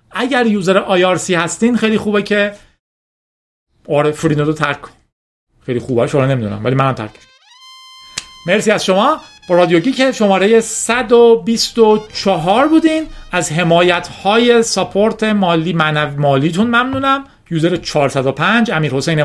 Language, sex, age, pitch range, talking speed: Persian, male, 40-59, 135-210 Hz, 125 wpm